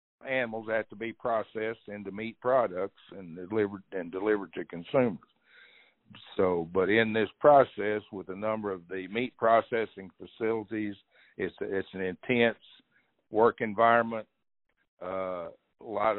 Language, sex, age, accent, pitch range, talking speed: English, male, 60-79, American, 95-110 Hz, 135 wpm